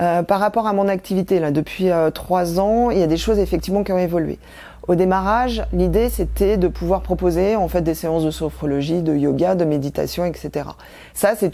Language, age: French, 40-59